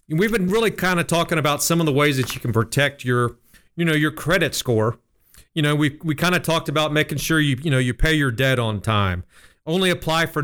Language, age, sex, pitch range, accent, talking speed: English, 40-59, male, 125-160 Hz, American, 245 wpm